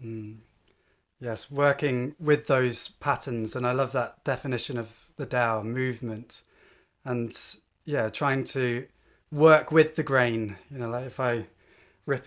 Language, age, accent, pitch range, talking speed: English, 20-39, British, 115-140 Hz, 140 wpm